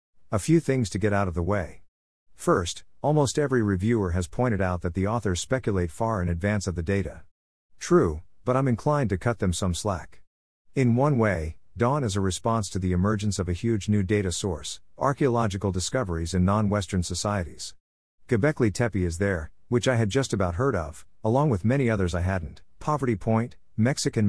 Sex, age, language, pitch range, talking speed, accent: male, 50-69, English, 90-115 Hz, 190 wpm, American